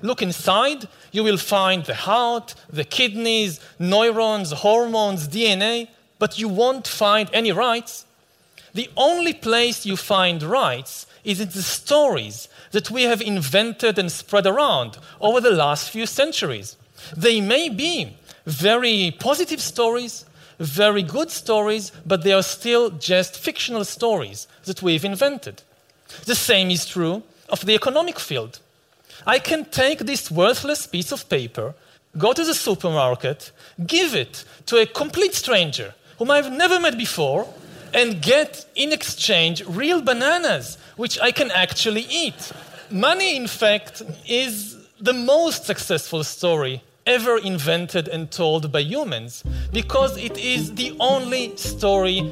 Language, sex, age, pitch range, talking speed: English, male, 40-59, 170-245 Hz, 140 wpm